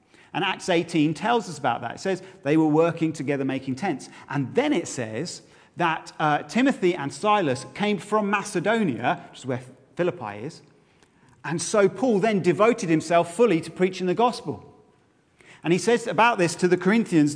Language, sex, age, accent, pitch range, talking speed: English, male, 40-59, British, 135-185 Hz, 175 wpm